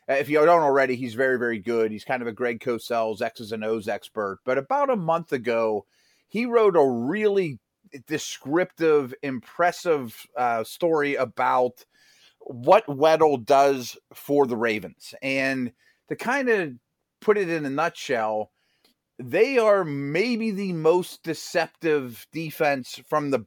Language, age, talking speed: English, 30-49, 145 wpm